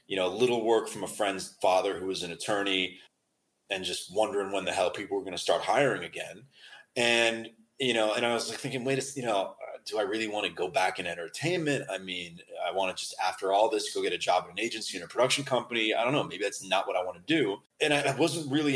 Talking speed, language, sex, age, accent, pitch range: 260 wpm, English, male, 30-49, American, 105-135 Hz